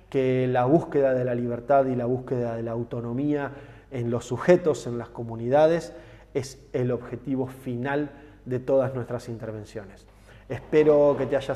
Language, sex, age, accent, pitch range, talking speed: Spanish, male, 20-39, Argentinian, 115-135 Hz, 155 wpm